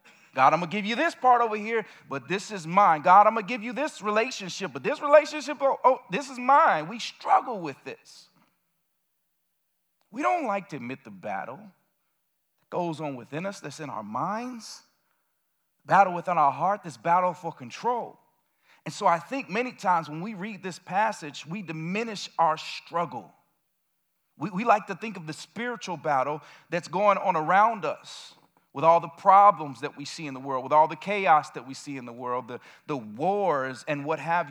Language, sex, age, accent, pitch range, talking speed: English, male, 40-59, American, 155-220 Hz, 195 wpm